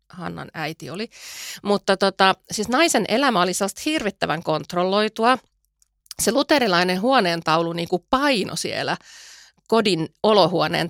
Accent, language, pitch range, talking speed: native, Finnish, 160-220 Hz, 105 wpm